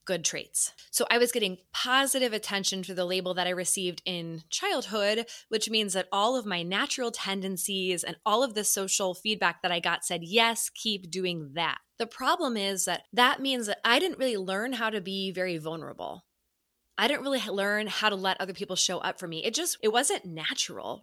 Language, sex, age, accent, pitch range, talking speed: English, female, 20-39, American, 185-255 Hz, 205 wpm